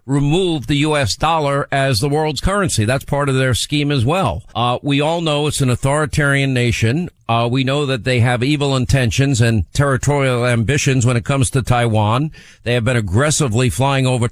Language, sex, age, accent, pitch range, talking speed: English, male, 50-69, American, 120-155 Hz, 190 wpm